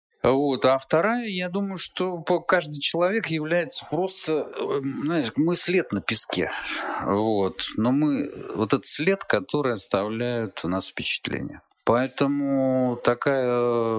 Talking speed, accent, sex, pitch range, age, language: 110 wpm, native, male, 95-135 Hz, 50-69, Russian